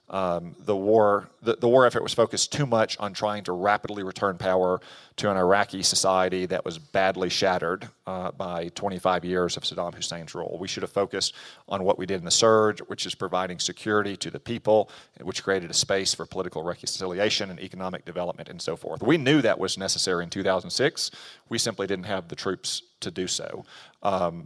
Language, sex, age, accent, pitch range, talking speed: English, male, 40-59, American, 90-105 Hz, 200 wpm